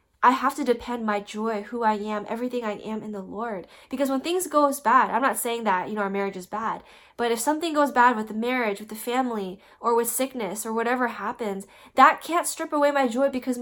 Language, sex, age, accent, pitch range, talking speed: English, female, 10-29, American, 215-260 Hz, 240 wpm